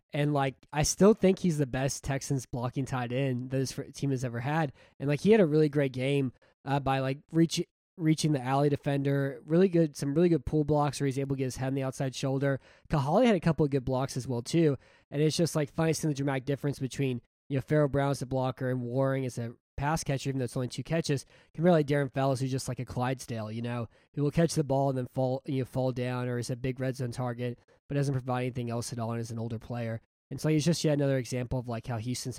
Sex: male